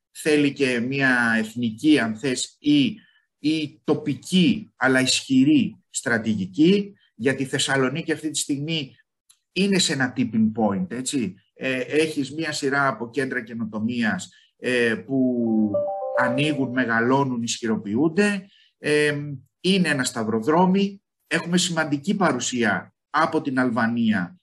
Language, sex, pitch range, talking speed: Greek, male, 130-180 Hz, 95 wpm